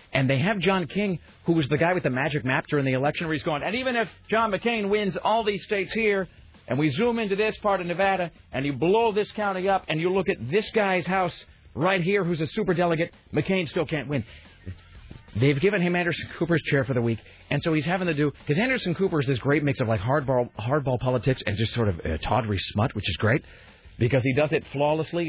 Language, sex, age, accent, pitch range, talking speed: English, male, 40-59, American, 110-175 Hz, 240 wpm